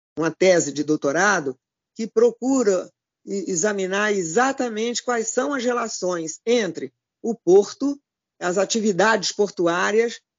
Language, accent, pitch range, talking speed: Portuguese, Brazilian, 165-240 Hz, 105 wpm